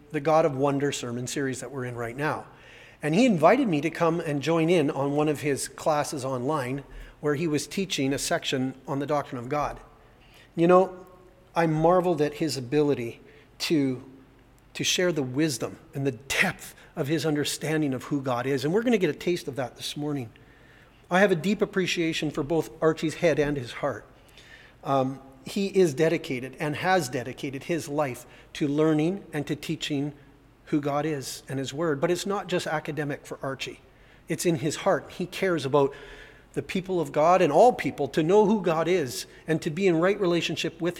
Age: 40-59